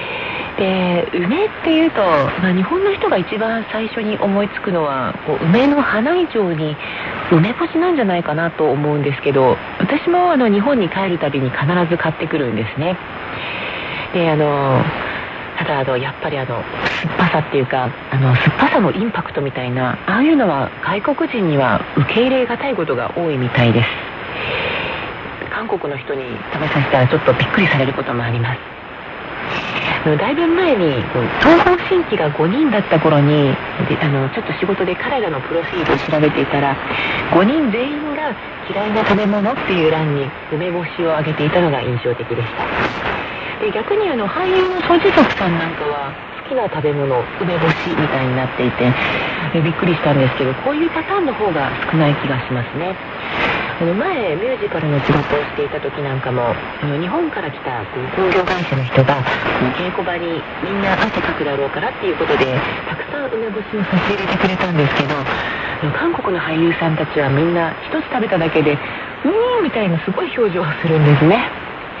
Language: Korean